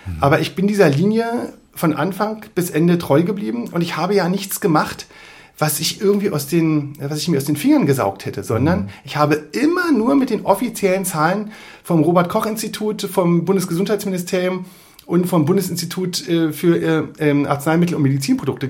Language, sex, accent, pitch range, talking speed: German, male, German, 155-205 Hz, 150 wpm